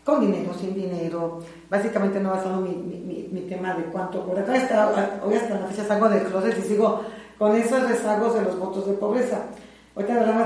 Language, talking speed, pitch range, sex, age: Spanish, 200 wpm, 190-235 Hz, female, 40-59